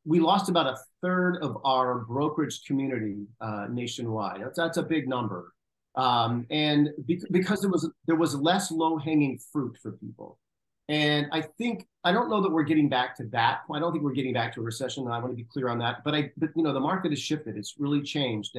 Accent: American